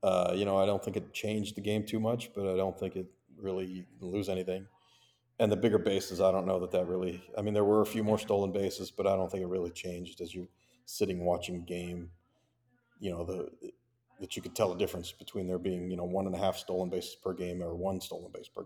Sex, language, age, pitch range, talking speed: male, English, 40-59, 95-115 Hz, 255 wpm